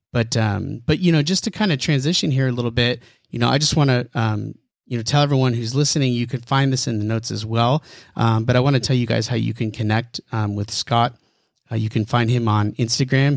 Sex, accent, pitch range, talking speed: male, American, 115-130 Hz, 260 wpm